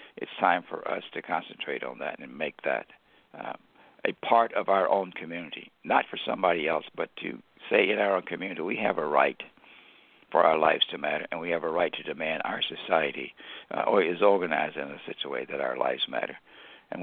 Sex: male